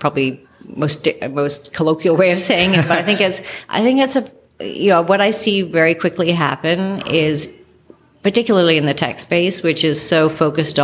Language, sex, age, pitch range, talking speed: English, female, 40-59, 140-170 Hz, 190 wpm